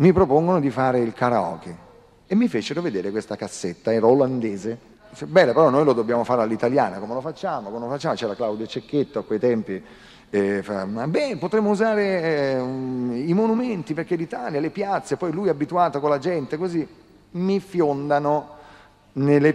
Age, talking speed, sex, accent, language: 40-59, 165 wpm, male, native, Italian